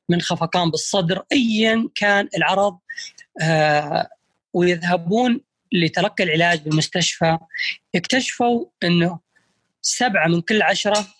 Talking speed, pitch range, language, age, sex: 90 wpm, 165-205 Hz, Arabic, 20-39, female